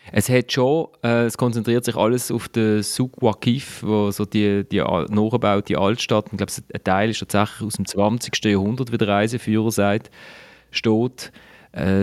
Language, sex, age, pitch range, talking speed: German, male, 30-49, 100-120 Hz, 170 wpm